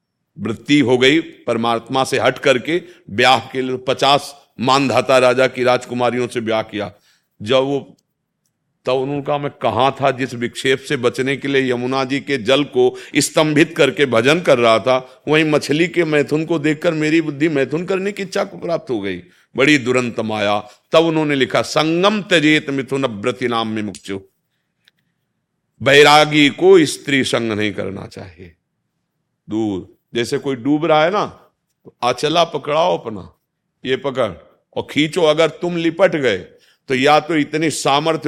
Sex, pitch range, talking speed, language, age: male, 125-155 Hz, 160 wpm, Hindi, 50-69